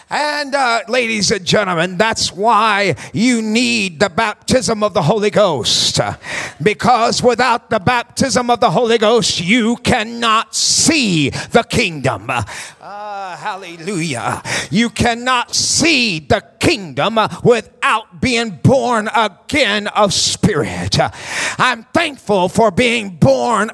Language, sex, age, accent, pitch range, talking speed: English, male, 40-59, American, 205-250 Hz, 115 wpm